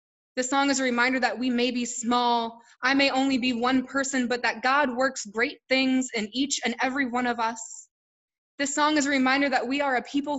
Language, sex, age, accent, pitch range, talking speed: English, female, 20-39, American, 210-255 Hz, 225 wpm